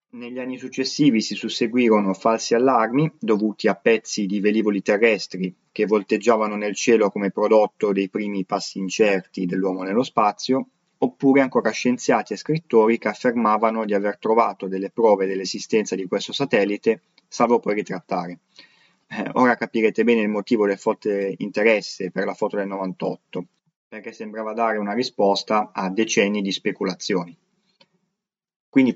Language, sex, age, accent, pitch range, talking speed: Italian, male, 20-39, native, 100-130 Hz, 140 wpm